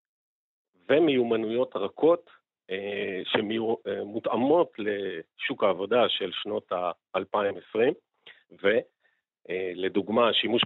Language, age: Hebrew, 50-69